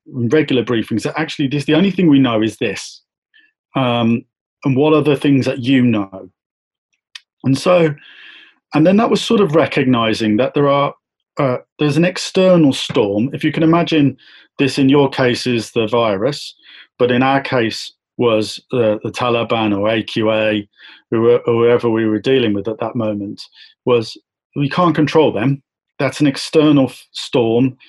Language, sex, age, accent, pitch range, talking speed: English, male, 40-59, British, 115-150 Hz, 165 wpm